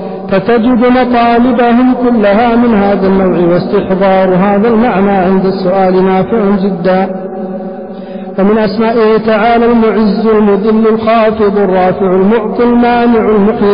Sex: male